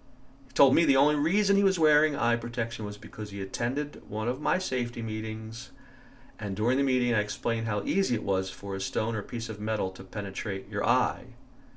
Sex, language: male, English